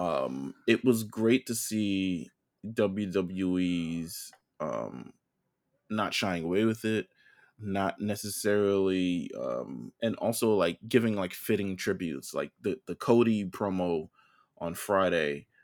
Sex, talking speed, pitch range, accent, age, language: male, 115 wpm, 90-105 Hz, American, 20-39, English